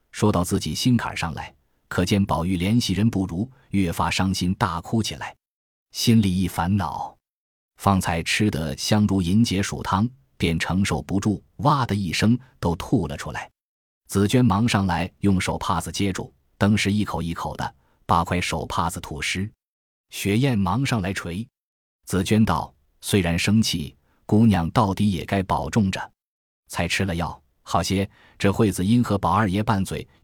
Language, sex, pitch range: Chinese, male, 85-105 Hz